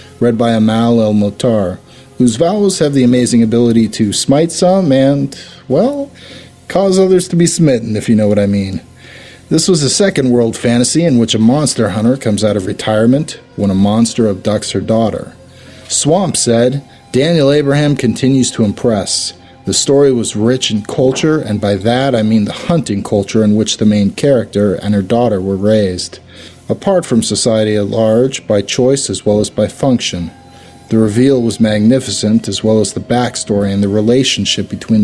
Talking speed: 175 wpm